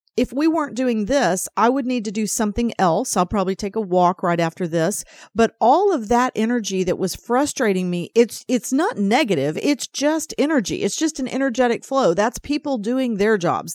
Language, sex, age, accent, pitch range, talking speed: English, female, 40-59, American, 195-270 Hz, 200 wpm